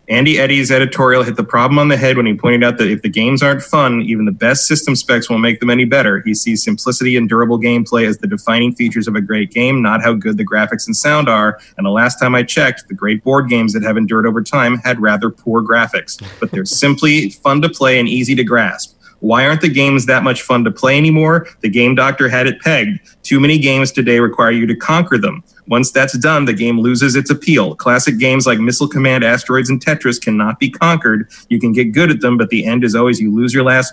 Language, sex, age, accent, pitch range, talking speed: English, male, 30-49, American, 115-140 Hz, 245 wpm